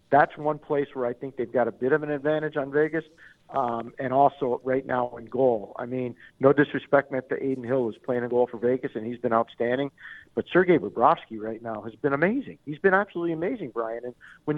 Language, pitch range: English, 120-145 Hz